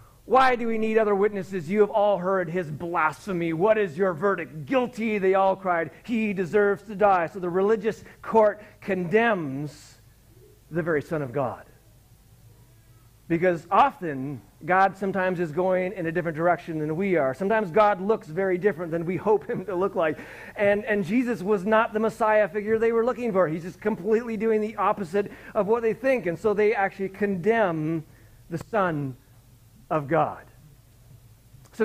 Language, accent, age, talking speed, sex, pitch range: English, American, 40-59, 170 wpm, male, 160-220 Hz